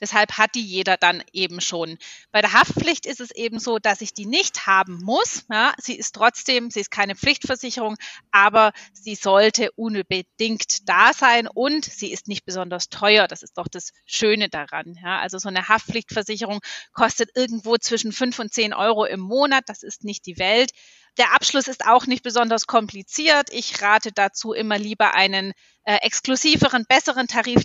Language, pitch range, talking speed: German, 195-245 Hz, 175 wpm